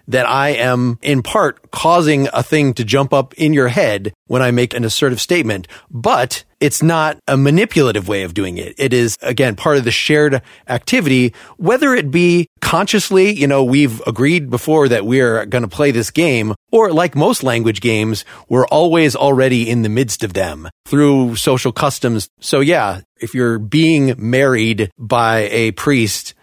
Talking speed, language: 175 wpm, English